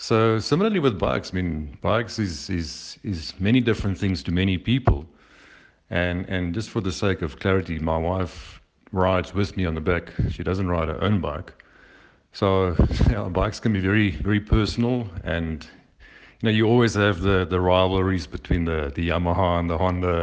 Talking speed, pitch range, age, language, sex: 185 wpm, 85-105 Hz, 50-69, English, male